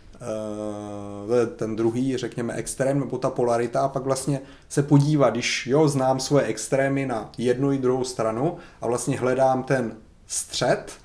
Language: Czech